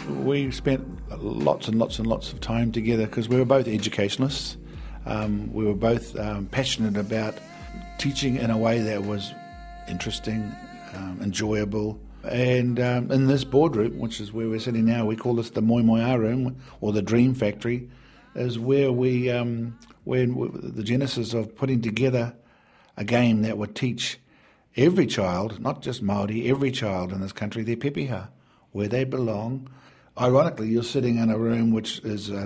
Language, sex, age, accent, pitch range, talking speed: English, male, 50-69, Australian, 105-125 Hz, 170 wpm